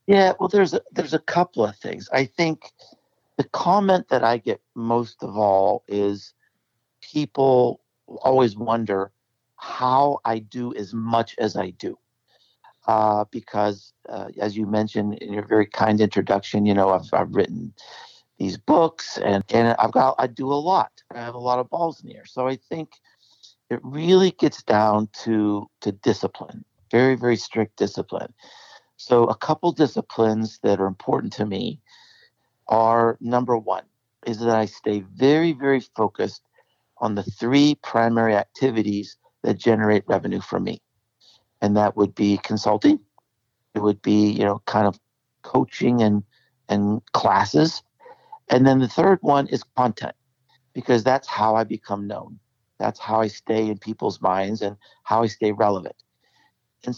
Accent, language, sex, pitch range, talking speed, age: American, English, male, 105-130 Hz, 155 wpm, 60-79